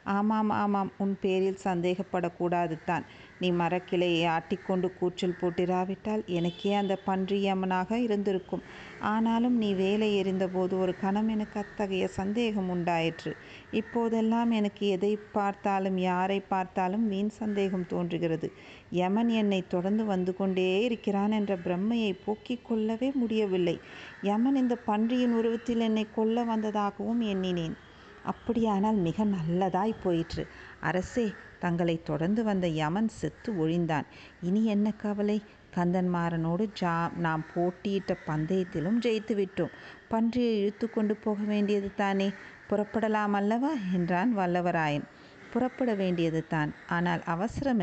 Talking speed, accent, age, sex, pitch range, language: 110 wpm, native, 50-69, female, 180-215 Hz, Tamil